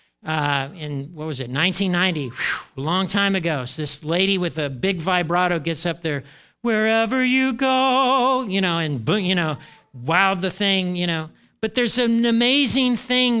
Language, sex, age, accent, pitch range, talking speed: English, male, 40-59, American, 140-195 Hz, 175 wpm